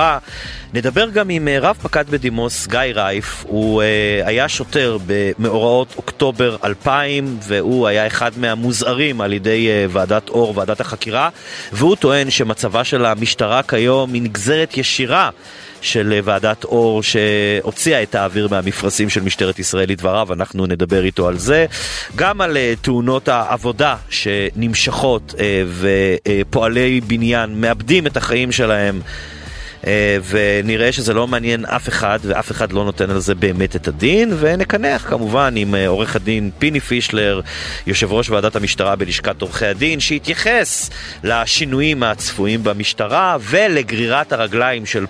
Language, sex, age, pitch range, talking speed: Hebrew, male, 30-49, 100-125 Hz, 130 wpm